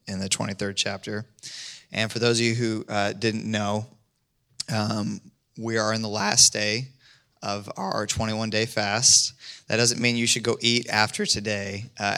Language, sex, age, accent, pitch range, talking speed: English, male, 20-39, American, 105-120 Hz, 170 wpm